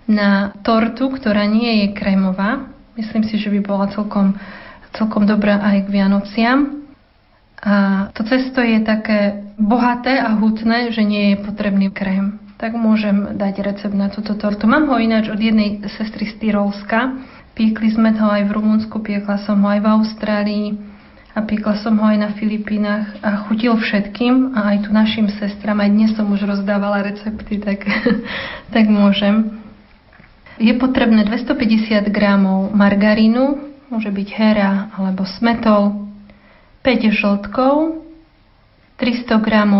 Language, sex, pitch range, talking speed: Slovak, female, 205-230 Hz, 140 wpm